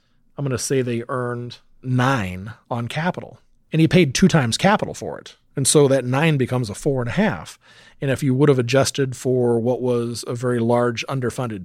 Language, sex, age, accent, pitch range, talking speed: English, male, 40-59, American, 105-135 Hz, 205 wpm